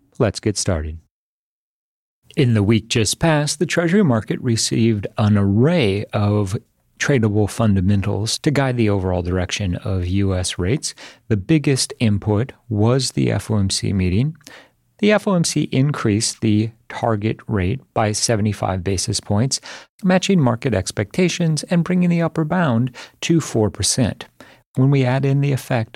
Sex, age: male, 40-59